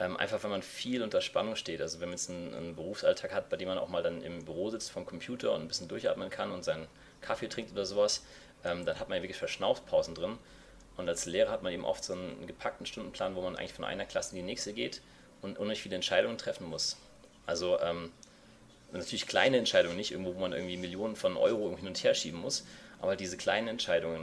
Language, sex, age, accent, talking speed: German, male, 30-49, German, 230 wpm